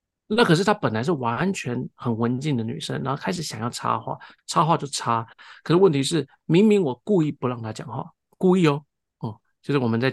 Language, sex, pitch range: Chinese, male, 120-160 Hz